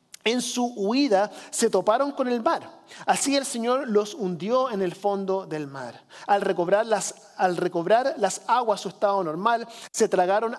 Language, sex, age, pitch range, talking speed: Spanish, male, 40-59, 175-220 Hz, 170 wpm